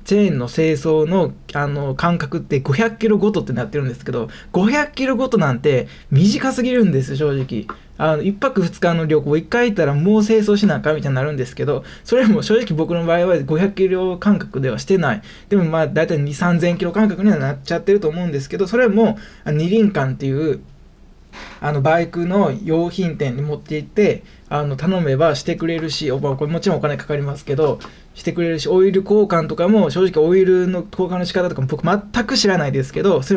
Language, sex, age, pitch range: Japanese, male, 20-39, 145-195 Hz